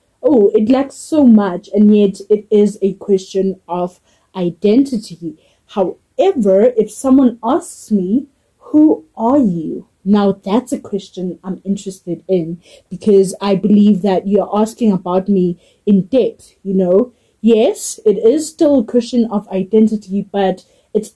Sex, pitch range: female, 185-215 Hz